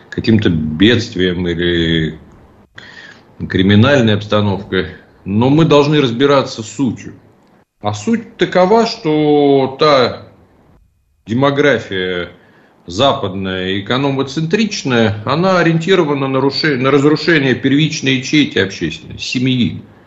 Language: Russian